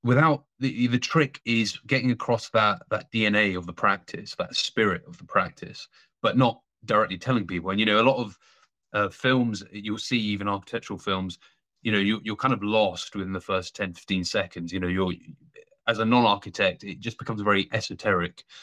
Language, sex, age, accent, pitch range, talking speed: English, male, 30-49, British, 100-120 Hz, 195 wpm